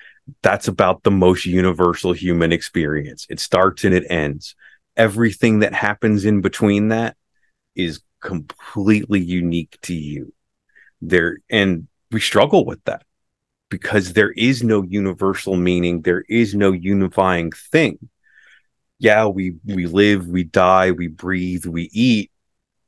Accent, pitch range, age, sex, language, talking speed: American, 85-110 Hz, 30-49, male, English, 130 wpm